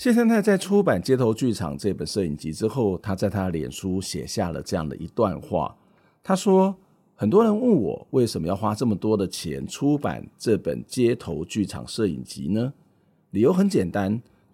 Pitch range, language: 100-145 Hz, Chinese